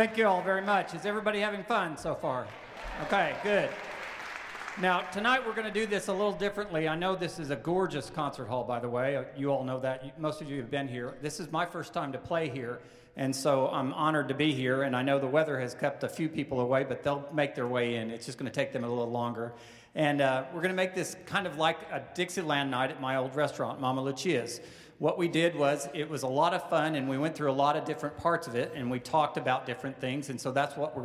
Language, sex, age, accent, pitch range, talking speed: English, male, 50-69, American, 130-160 Hz, 265 wpm